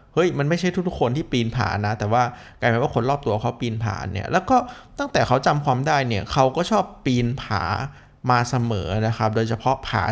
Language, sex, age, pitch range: Thai, male, 20-39, 110-145 Hz